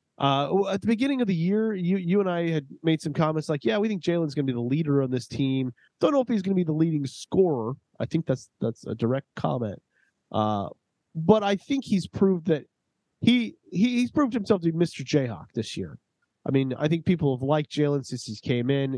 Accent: American